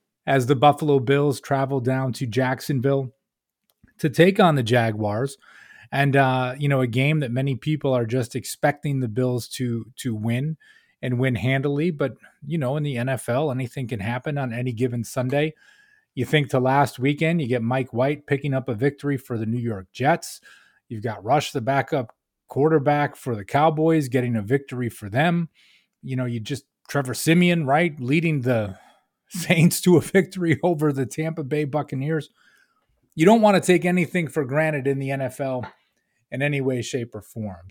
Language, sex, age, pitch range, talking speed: English, male, 30-49, 130-155 Hz, 180 wpm